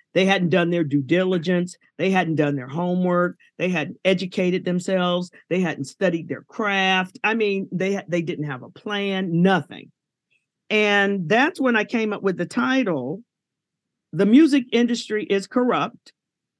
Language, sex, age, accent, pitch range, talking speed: English, male, 50-69, American, 165-235 Hz, 155 wpm